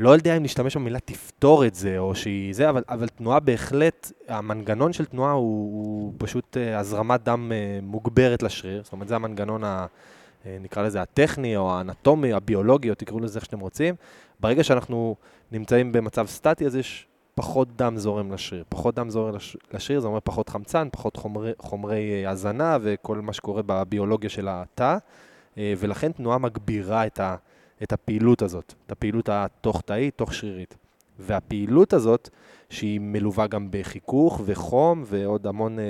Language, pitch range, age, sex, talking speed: Hebrew, 105-125 Hz, 20-39, male, 155 wpm